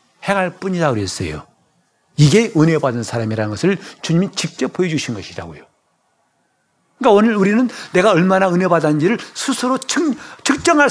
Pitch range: 125-195 Hz